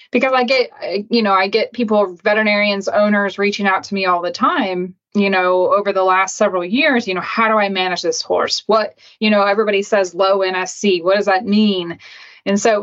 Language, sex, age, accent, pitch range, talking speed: English, female, 20-39, American, 180-210 Hz, 215 wpm